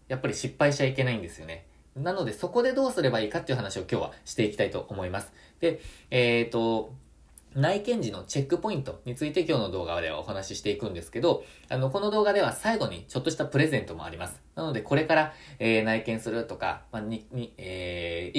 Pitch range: 100-155 Hz